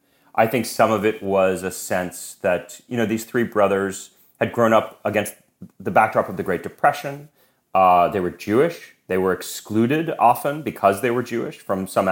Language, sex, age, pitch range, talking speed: English, male, 30-49, 90-120 Hz, 190 wpm